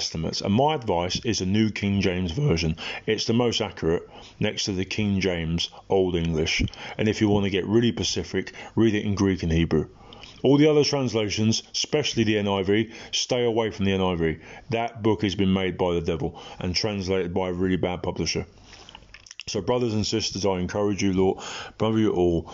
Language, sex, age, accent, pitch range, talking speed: English, male, 30-49, British, 90-110 Hz, 190 wpm